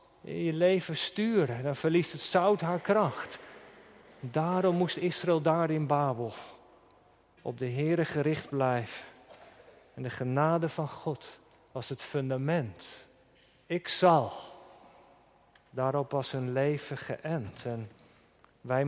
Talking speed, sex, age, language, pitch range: 120 wpm, male, 50-69, Dutch, 135-175 Hz